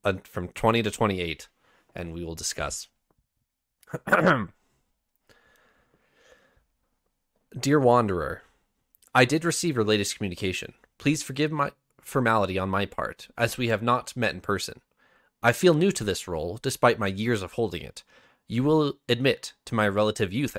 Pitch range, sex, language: 100-130 Hz, male, English